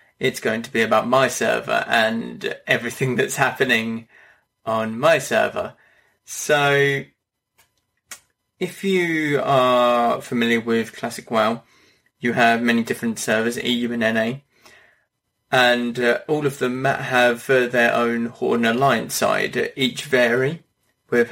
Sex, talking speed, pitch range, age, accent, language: male, 130 wpm, 115-130 Hz, 20-39, British, English